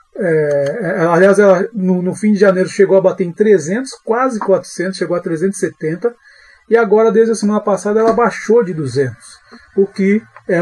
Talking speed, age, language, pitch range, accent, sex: 175 wpm, 40-59, Portuguese, 165-220 Hz, Brazilian, male